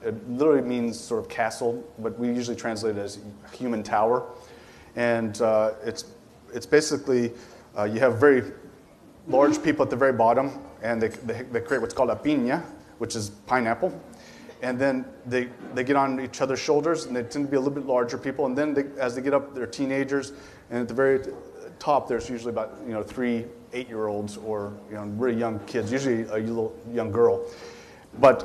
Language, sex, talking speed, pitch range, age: English, male, 200 wpm, 115-135 Hz, 30-49